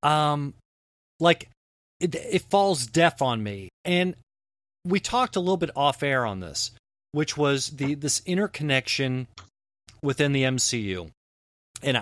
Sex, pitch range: male, 115-155 Hz